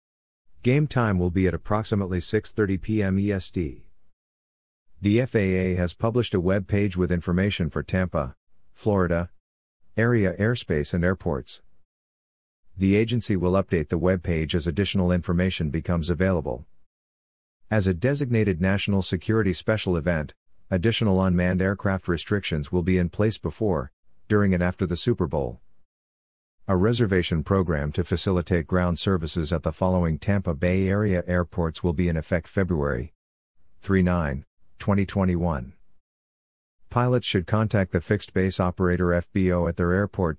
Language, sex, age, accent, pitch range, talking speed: English, male, 50-69, American, 85-100 Hz, 135 wpm